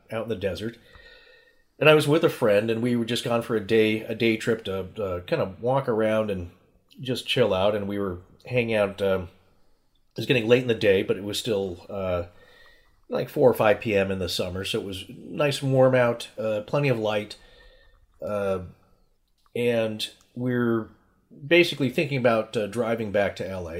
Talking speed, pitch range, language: 195 wpm, 100-125 Hz, English